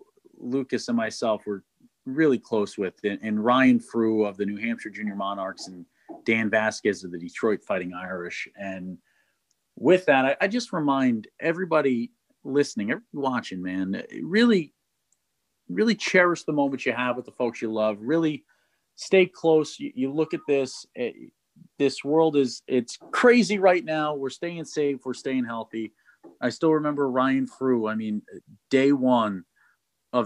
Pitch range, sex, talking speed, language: 105-140 Hz, male, 160 wpm, English